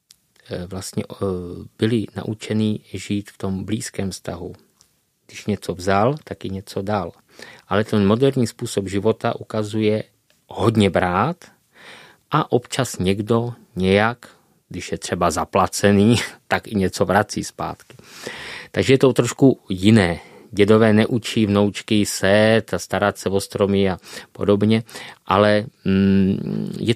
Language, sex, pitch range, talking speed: Czech, male, 100-125 Hz, 120 wpm